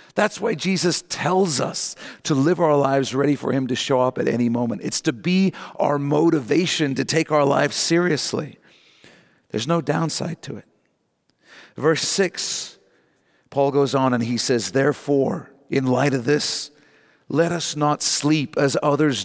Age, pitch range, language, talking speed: 50-69, 120-150 Hz, English, 160 wpm